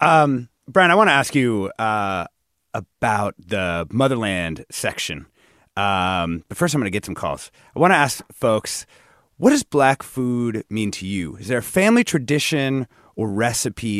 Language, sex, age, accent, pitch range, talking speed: English, male, 30-49, American, 100-150 Hz, 170 wpm